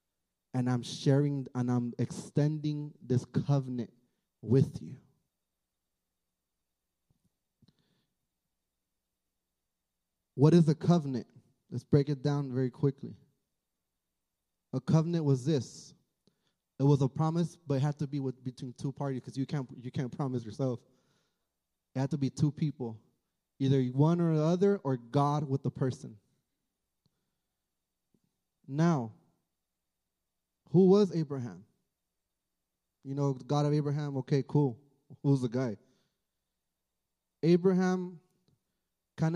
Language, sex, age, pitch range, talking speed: Spanish, male, 20-39, 130-165 Hz, 110 wpm